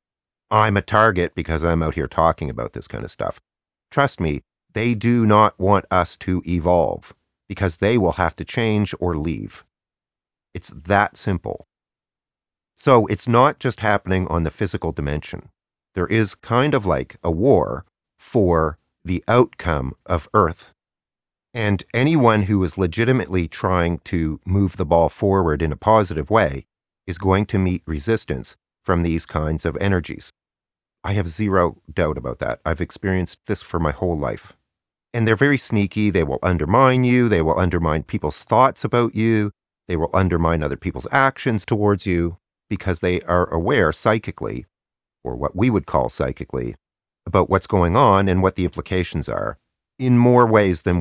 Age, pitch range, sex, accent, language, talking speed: 40-59, 80-105 Hz, male, American, English, 165 wpm